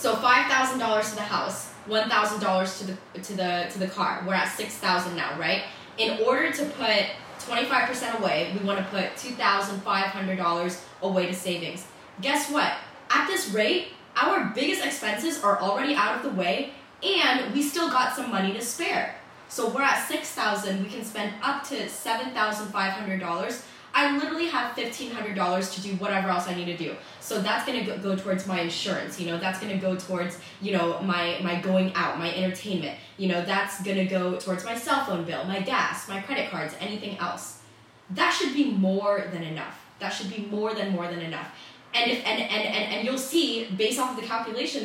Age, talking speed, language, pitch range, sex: 10-29, 190 wpm, English, 185-240 Hz, female